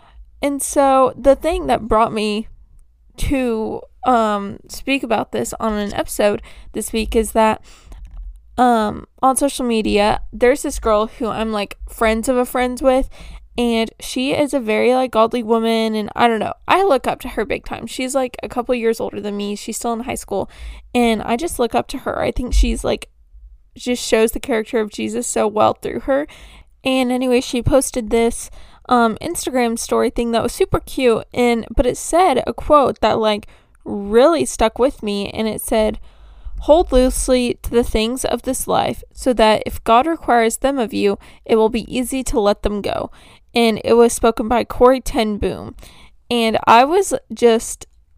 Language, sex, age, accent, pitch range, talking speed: English, female, 10-29, American, 220-260 Hz, 190 wpm